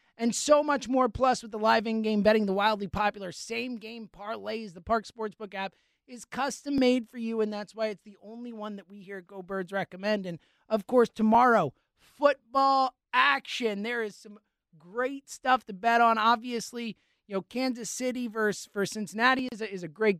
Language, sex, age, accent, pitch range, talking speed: English, male, 30-49, American, 205-255 Hz, 195 wpm